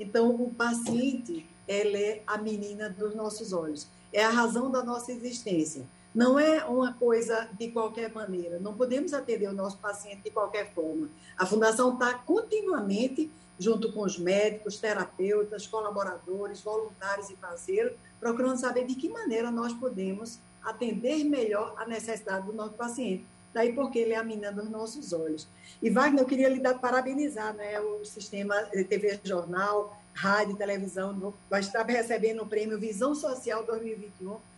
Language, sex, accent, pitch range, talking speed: Portuguese, female, Brazilian, 205-250 Hz, 155 wpm